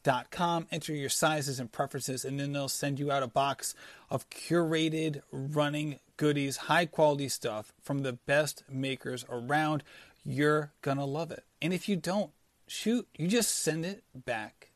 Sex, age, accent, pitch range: male, 30-49, American, 140-170 Hz